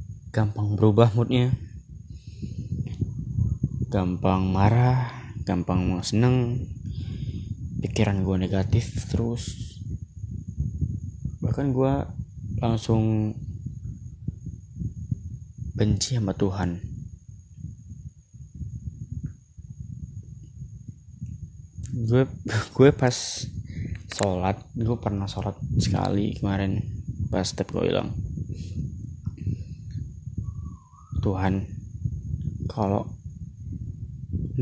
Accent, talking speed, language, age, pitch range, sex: native, 55 wpm, Indonesian, 20-39, 95-115 Hz, male